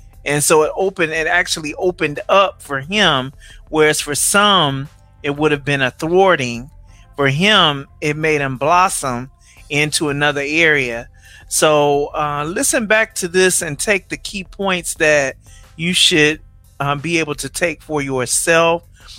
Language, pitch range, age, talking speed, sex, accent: English, 140-175 Hz, 30-49, 155 wpm, male, American